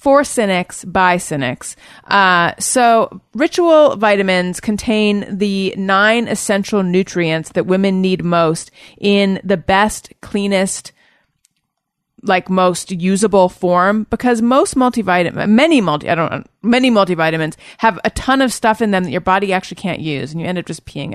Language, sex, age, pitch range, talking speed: English, female, 30-49, 175-225 Hz, 155 wpm